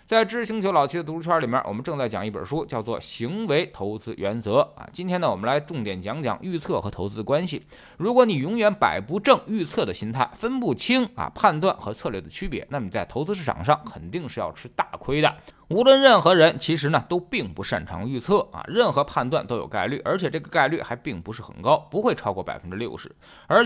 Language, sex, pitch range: Chinese, male, 100-170 Hz